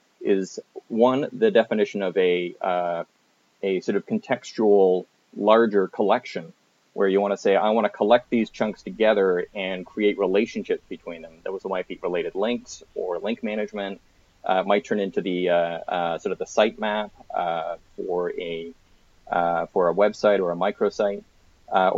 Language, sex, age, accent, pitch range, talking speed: English, male, 30-49, American, 90-110 Hz, 170 wpm